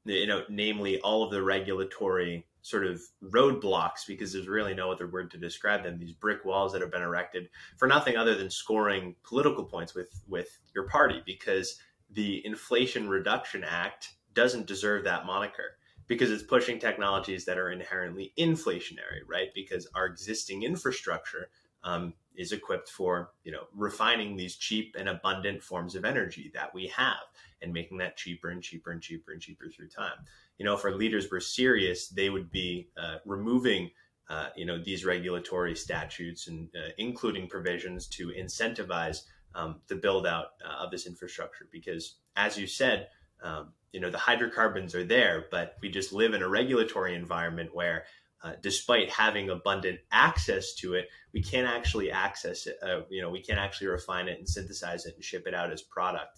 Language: English